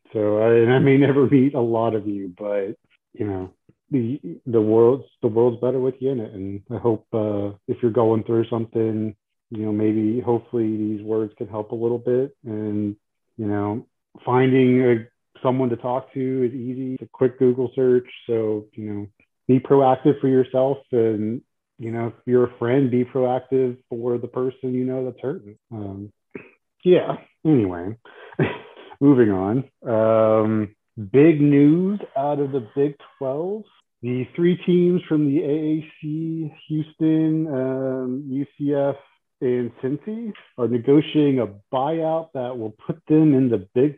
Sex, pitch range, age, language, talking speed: male, 110-135 Hz, 30-49, English, 160 wpm